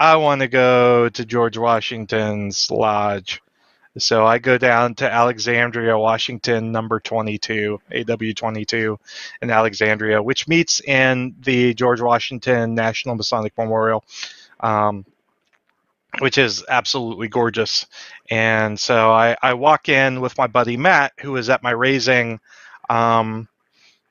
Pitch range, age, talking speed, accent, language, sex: 115-140 Hz, 20-39, 125 wpm, American, English, male